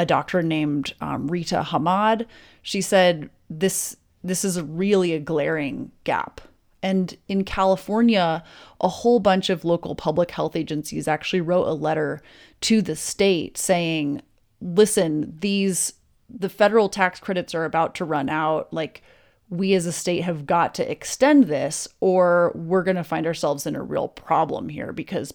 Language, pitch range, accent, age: English, 165-195 Hz, American, 30-49